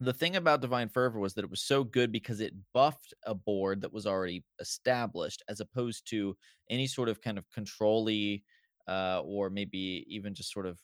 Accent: American